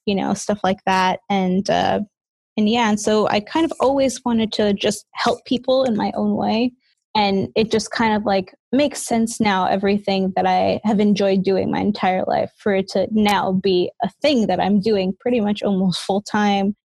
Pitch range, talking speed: 195-225 Hz, 200 wpm